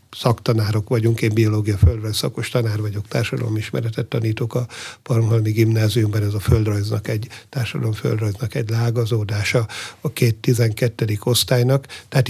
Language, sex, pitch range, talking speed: Hungarian, male, 110-125 Hz, 130 wpm